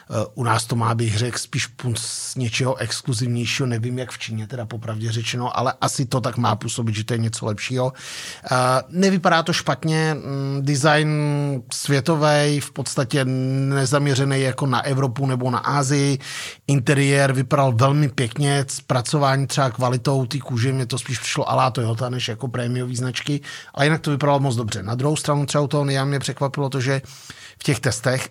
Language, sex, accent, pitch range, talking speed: Czech, male, native, 120-140 Hz, 175 wpm